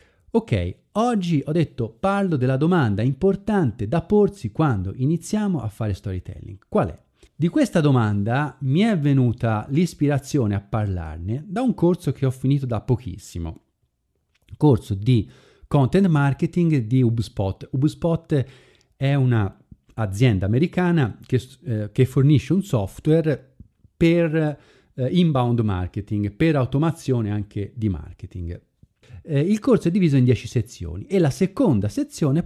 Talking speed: 130 wpm